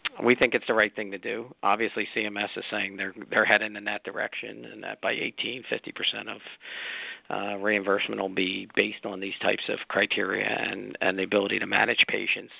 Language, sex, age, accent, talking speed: English, male, 50-69, American, 195 wpm